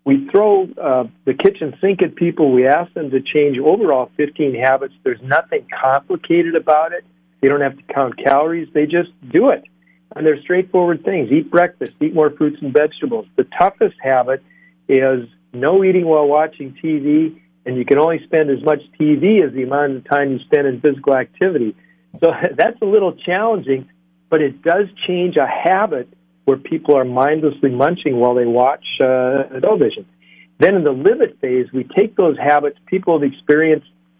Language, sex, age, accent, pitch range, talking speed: English, male, 50-69, American, 130-165 Hz, 180 wpm